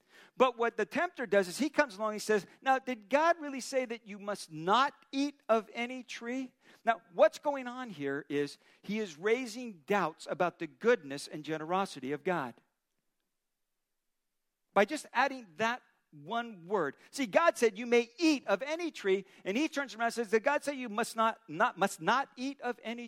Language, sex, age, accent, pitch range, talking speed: English, male, 50-69, American, 195-270 Hz, 195 wpm